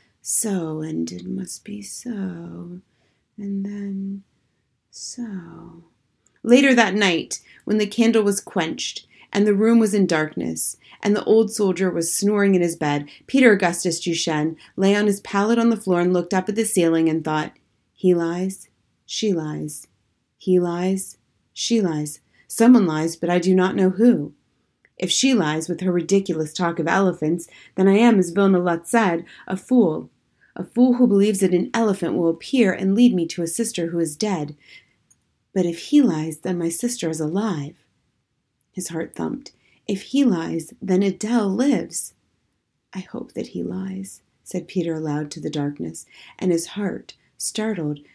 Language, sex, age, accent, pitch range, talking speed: English, female, 30-49, American, 160-205 Hz, 170 wpm